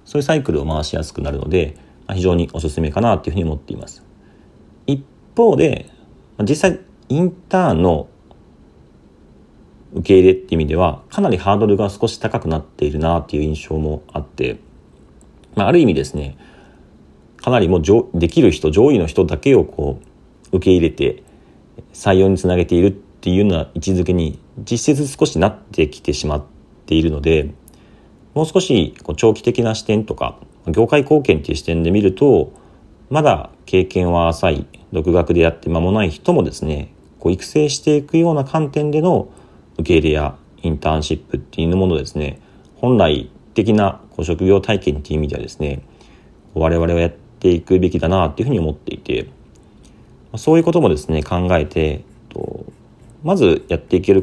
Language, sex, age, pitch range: Japanese, male, 40-59, 75-110 Hz